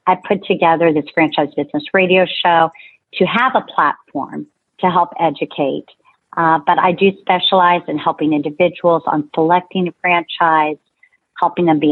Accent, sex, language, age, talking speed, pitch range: American, female, English, 50-69, 150 wpm, 160-200 Hz